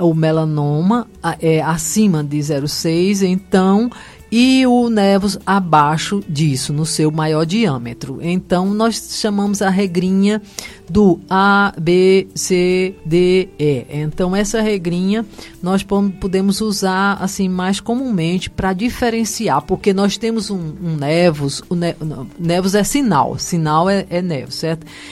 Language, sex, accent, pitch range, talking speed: Portuguese, female, Brazilian, 155-200 Hz, 120 wpm